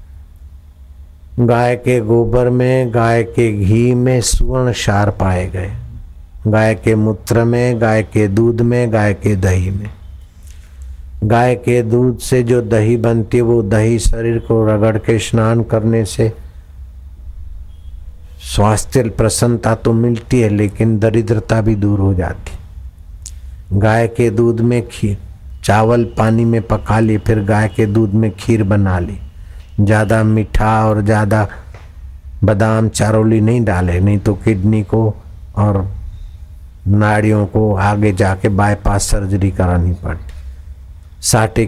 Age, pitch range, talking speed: 60-79, 90-115 Hz, 135 wpm